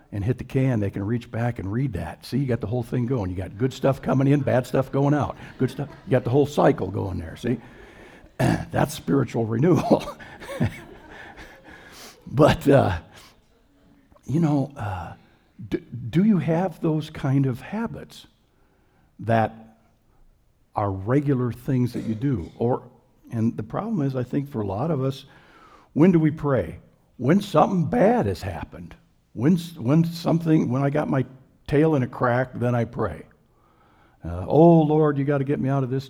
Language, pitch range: English, 110-145 Hz